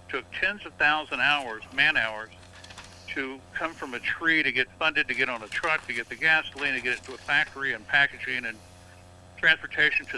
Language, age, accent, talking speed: English, 60-79, American, 205 wpm